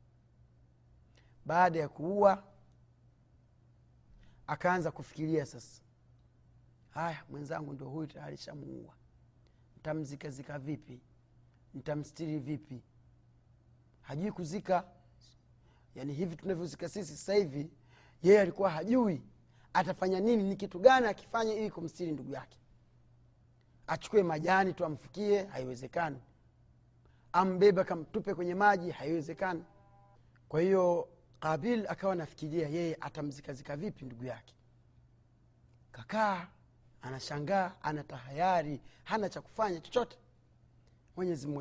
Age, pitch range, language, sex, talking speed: 40-59, 120-170 Hz, Swahili, male, 95 wpm